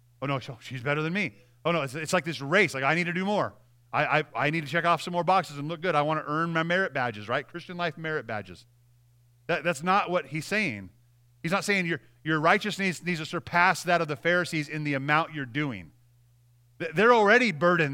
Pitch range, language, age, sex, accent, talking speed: 120-185 Hz, English, 30-49, male, American, 230 wpm